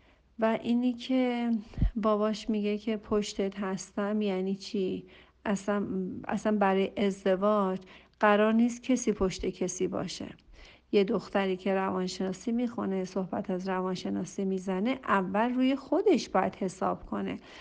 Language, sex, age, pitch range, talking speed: Persian, female, 50-69, 195-235 Hz, 120 wpm